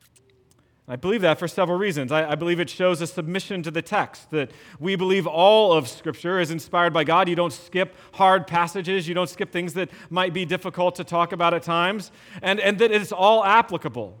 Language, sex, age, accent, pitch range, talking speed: English, male, 40-59, American, 155-195 Hz, 210 wpm